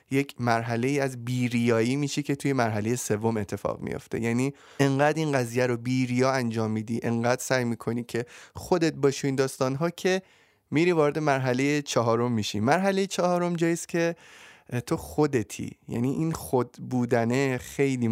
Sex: male